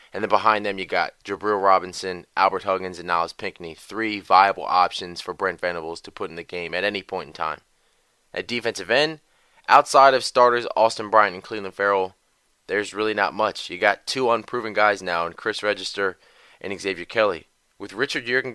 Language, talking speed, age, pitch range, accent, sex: English, 190 wpm, 20-39, 95-110 Hz, American, male